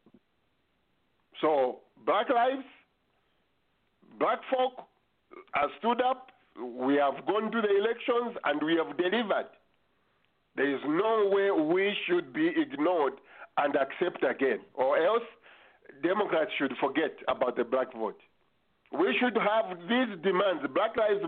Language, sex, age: English, male, 50-69